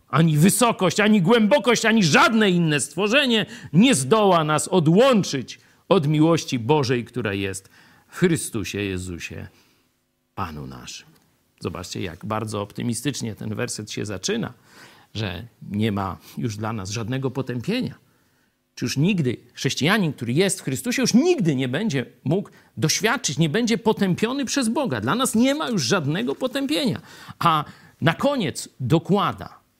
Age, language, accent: 50-69, Polish, native